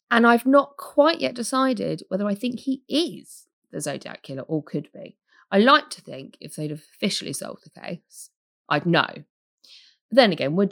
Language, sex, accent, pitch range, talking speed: English, female, British, 155-215 Hz, 185 wpm